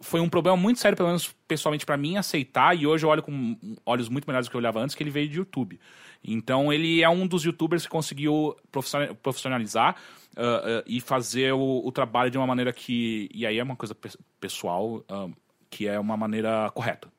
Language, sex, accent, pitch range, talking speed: Portuguese, male, Brazilian, 115-160 Hz, 215 wpm